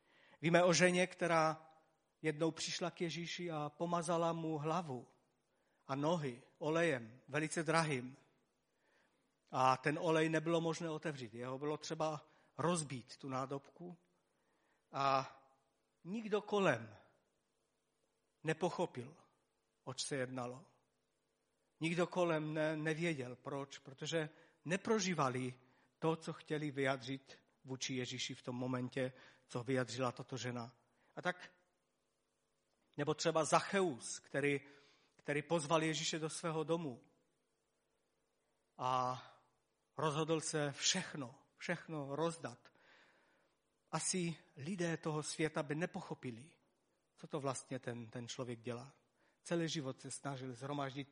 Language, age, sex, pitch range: Czech, 50-69, male, 130-165 Hz